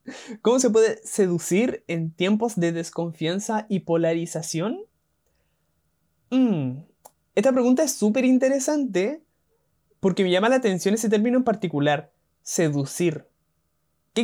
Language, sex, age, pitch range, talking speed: Spanish, male, 20-39, 170-230 Hz, 115 wpm